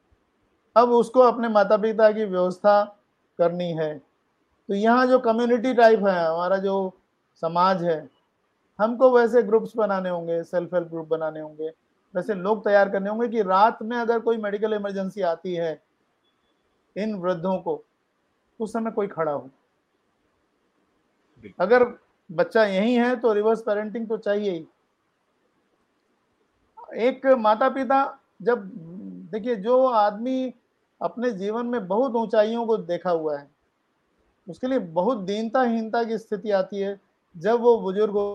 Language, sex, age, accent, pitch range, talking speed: English, male, 50-69, Indian, 185-235 Hz, 120 wpm